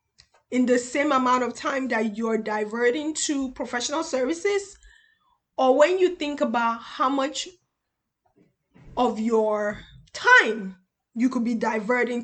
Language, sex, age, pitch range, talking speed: English, female, 10-29, 225-290 Hz, 125 wpm